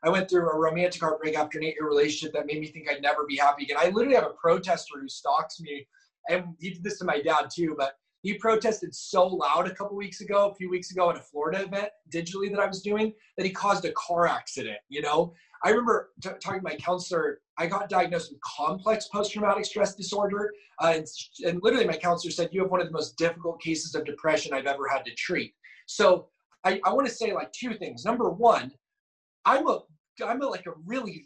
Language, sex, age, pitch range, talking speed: English, male, 30-49, 160-205 Hz, 230 wpm